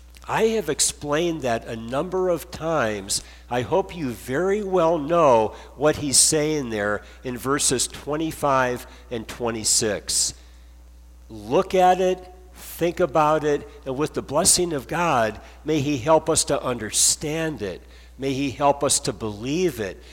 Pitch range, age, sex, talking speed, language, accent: 105-155 Hz, 50-69, male, 145 wpm, English, American